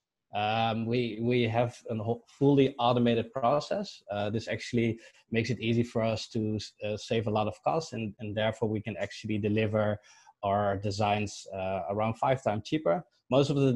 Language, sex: Thai, male